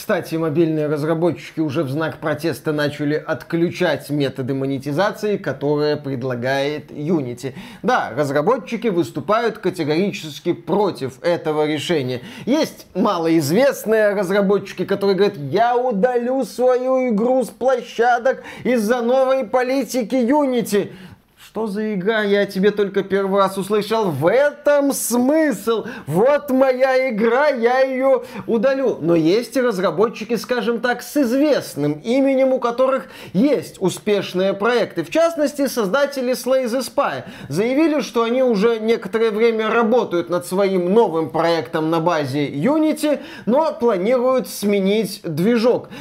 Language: Russian